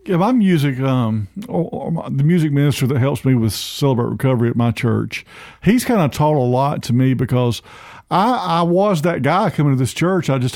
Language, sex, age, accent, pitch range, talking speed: English, male, 50-69, American, 130-170 Hz, 200 wpm